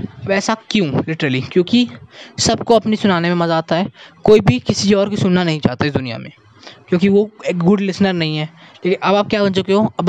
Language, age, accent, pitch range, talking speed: Hindi, 20-39, native, 165-200 Hz, 220 wpm